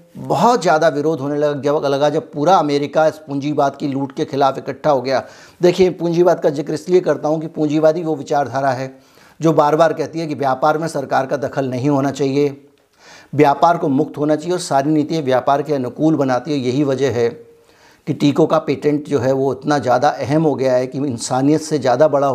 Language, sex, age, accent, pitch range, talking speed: Hindi, male, 50-69, native, 135-160 Hz, 210 wpm